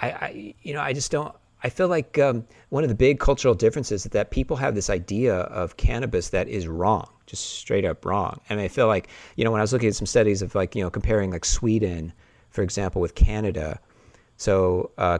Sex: male